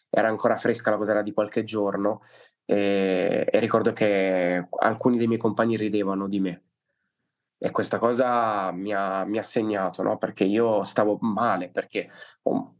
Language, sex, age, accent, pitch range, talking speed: Italian, male, 20-39, native, 105-120 Hz, 165 wpm